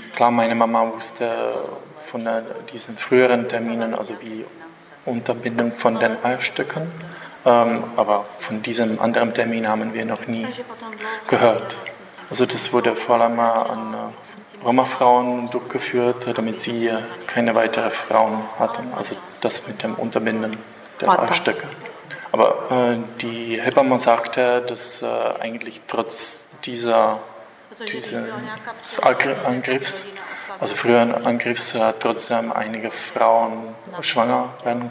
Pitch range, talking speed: 115-125 Hz, 115 wpm